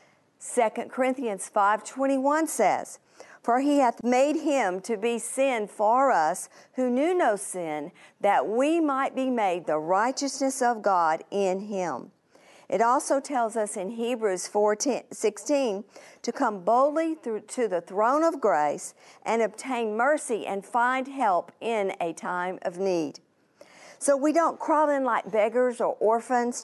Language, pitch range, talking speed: English, 210-260 Hz, 145 wpm